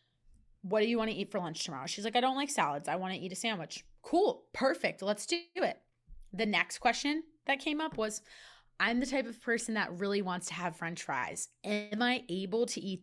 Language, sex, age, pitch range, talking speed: English, female, 20-39, 185-235 Hz, 230 wpm